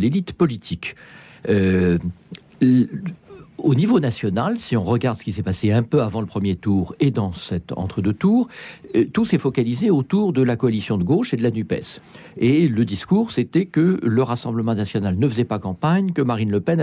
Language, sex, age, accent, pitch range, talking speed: French, male, 50-69, French, 105-155 Hz, 190 wpm